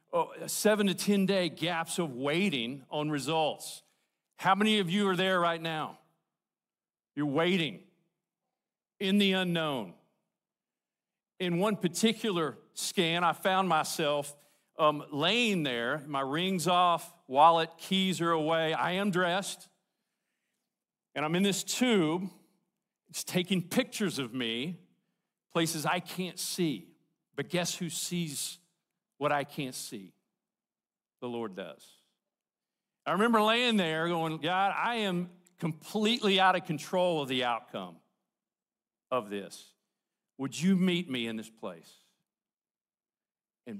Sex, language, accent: male, English, American